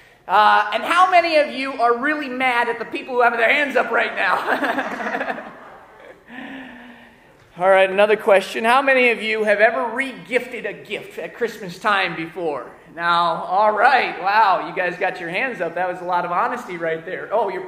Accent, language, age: American, English, 30-49